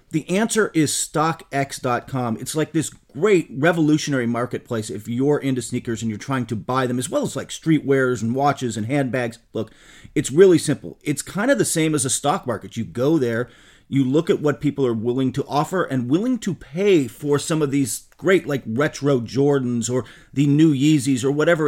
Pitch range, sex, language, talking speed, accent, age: 130-165 Hz, male, English, 200 wpm, American, 40-59